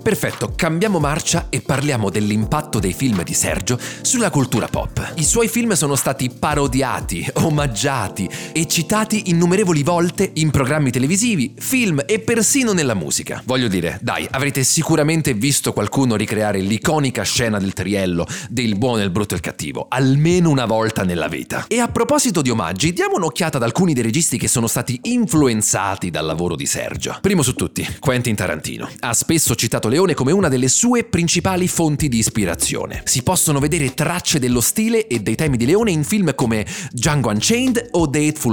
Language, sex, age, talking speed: Italian, male, 30-49, 170 wpm